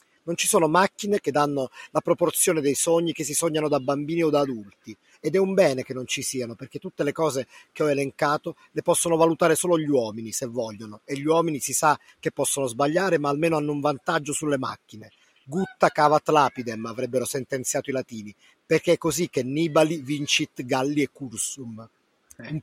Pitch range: 130-165 Hz